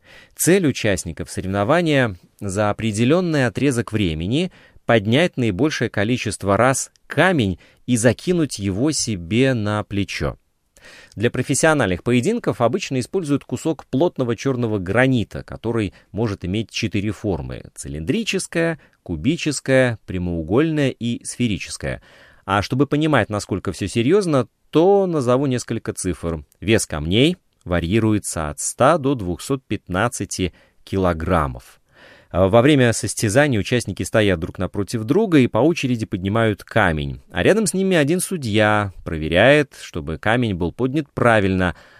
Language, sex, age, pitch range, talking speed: Russian, male, 30-49, 95-135 Hz, 115 wpm